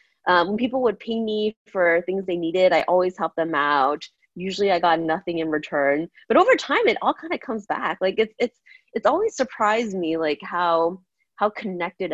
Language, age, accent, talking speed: English, 20-39, American, 205 wpm